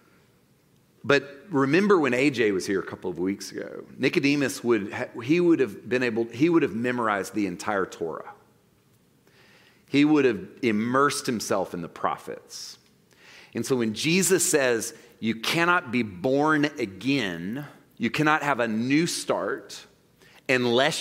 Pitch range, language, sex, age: 110-140 Hz, English, male, 40-59